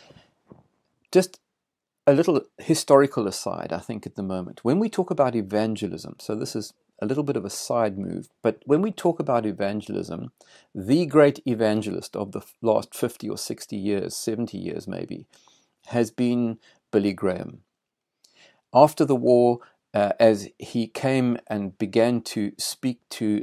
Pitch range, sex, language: 105-125 Hz, male, English